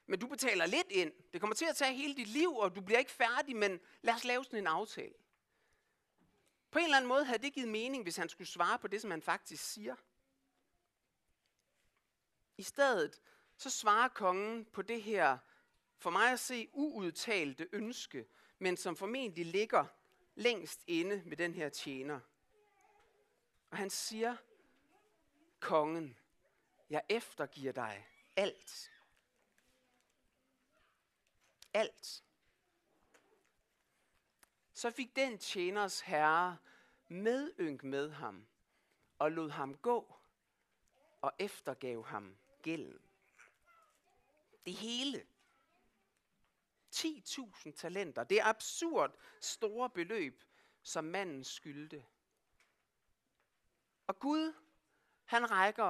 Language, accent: Danish, native